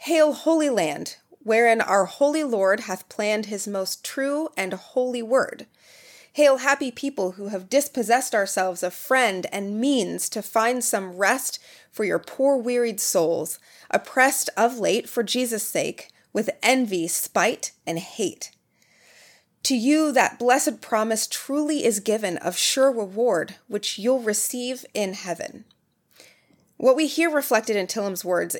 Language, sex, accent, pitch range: English, female, American, 195-255 Hz